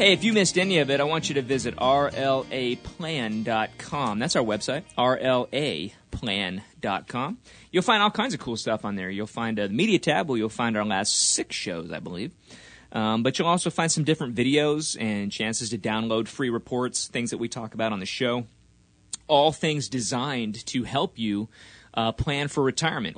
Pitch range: 105-130 Hz